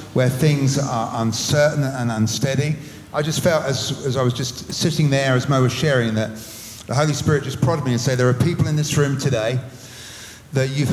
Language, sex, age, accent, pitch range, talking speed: English, male, 40-59, British, 120-150 Hz, 210 wpm